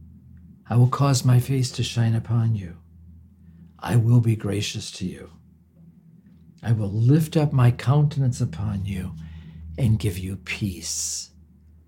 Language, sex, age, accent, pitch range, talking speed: English, male, 50-69, American, 115-155 Hz, 135 wpm